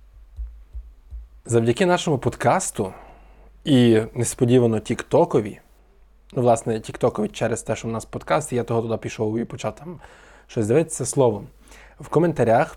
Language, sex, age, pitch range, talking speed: Ukrainian, male, 20-39, 115-145 Hz, 130 wpm